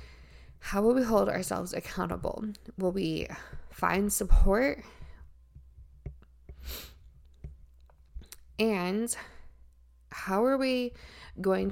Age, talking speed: 20-39, 75 wpm